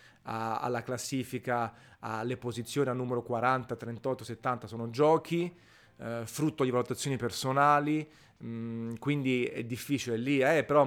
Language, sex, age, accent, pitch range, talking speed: Italian, male, 30-49, native, 115-145 Hz, 135 wpm